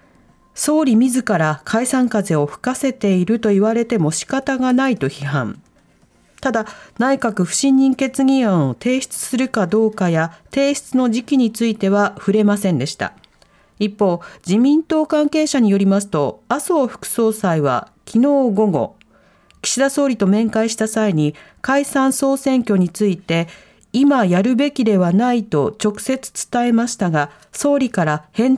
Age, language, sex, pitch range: 40-59, Japanese, female, 190-260 Hz